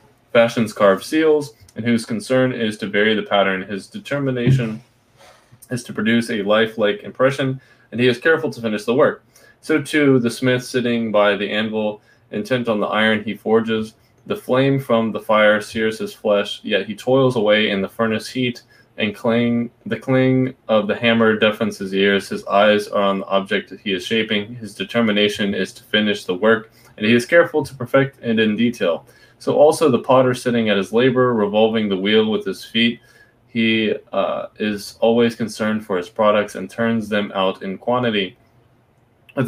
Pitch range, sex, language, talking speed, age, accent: 105-120 Hz, male, English, 180 wpm, 20-39, American